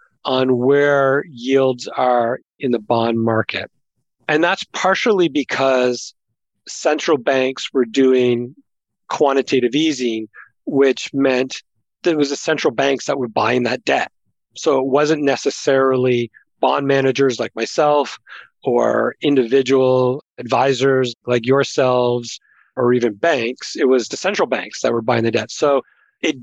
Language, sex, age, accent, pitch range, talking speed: English, male, 40-59, American, 125-145 Hz, 135 wpm